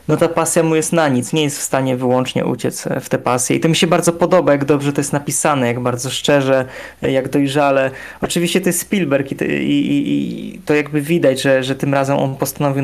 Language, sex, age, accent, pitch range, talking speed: Polish, male, 20-39, native, 135-160 Hz, 215 wpm